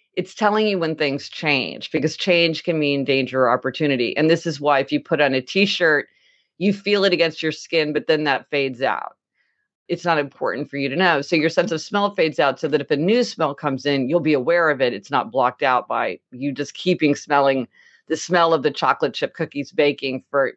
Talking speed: 230 wpm